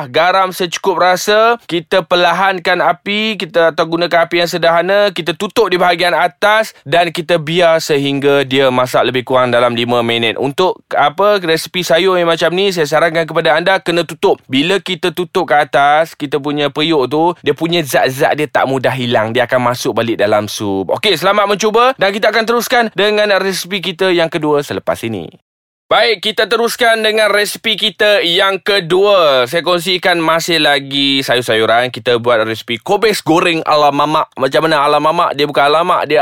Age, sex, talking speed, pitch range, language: 20-39, male, 175 wpm, 130-180 Hz, Malay